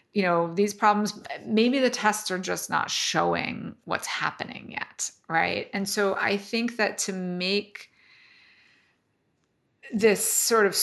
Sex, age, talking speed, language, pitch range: female, 30-49, 140 wpm, English, 180-220 Hz